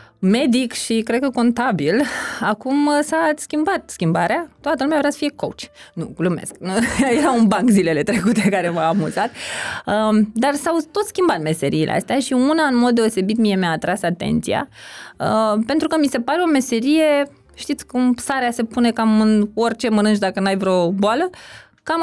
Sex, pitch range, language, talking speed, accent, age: female, 200-290 Hz, Romanian, 165 wpm, native, 20-39